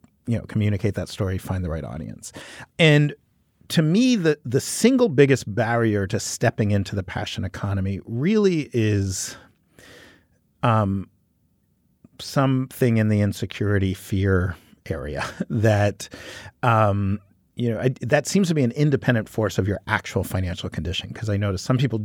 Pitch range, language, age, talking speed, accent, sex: 100-130 Hz, English, 40-59, 145 wpm, American, male